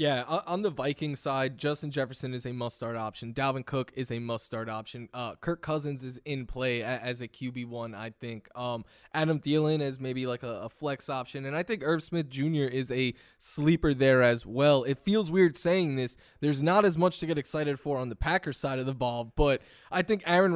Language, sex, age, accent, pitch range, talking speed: English, male, 20-39, American, 130-160 Hz, 220 wpm